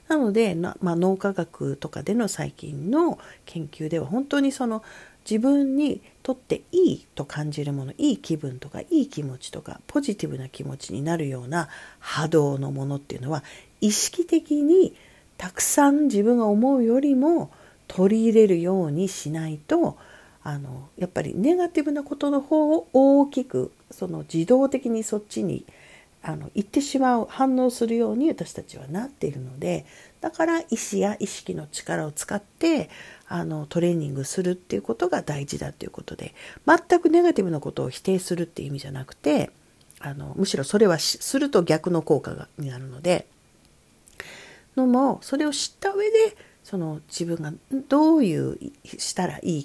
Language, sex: Japanese, female